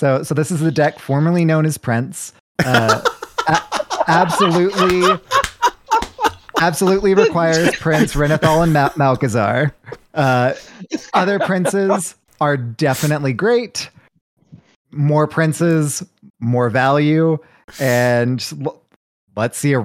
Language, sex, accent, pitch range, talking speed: English, male, American, 120-165 Hz, 105 wpm